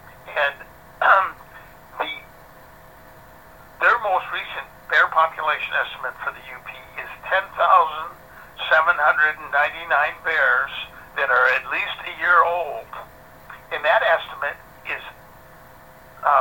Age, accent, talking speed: 60-79, American, 100 wpm